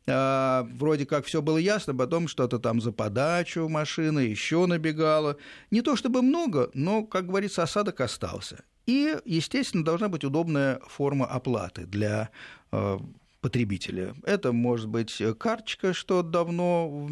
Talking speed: 140 wpm